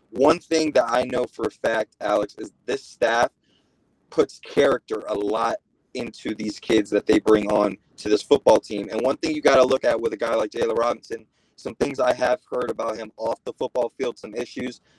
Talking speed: 215 wpm